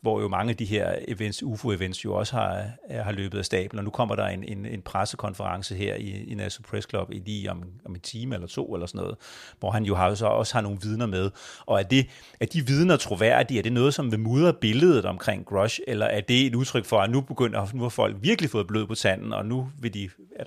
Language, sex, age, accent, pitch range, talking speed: Danish, male, 30-49, native, 100-120 Hz, 235 wpm